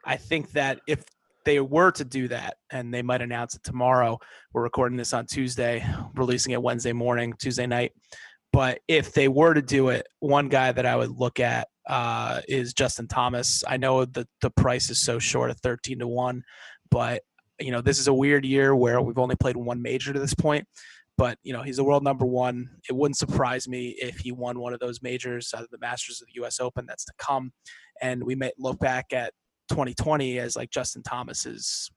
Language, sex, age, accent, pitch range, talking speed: English, male, 20-39, American, 125-145 Hz, 215 wpm